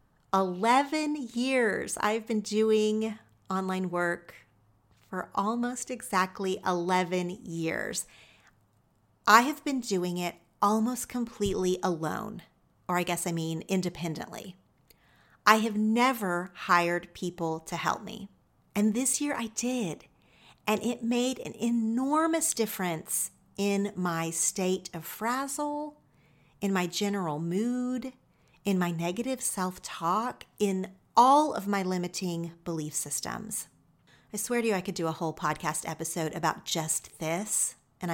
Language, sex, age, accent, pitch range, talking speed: English, female, 40-59, American, 170-220 Hz, 125 wpm